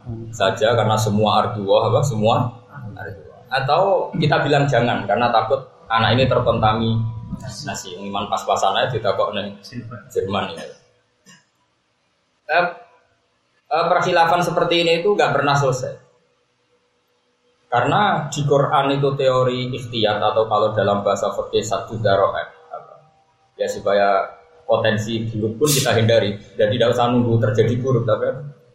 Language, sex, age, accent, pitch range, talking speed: Indonesian, male, 20-39, native, 105-140 Hz, 125 wpm